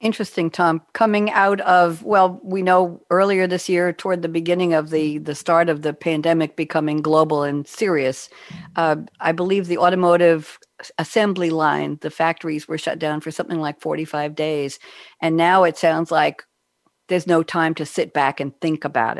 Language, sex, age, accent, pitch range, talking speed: English, female, 50-69, American, 155-195 Hz, 175 wpm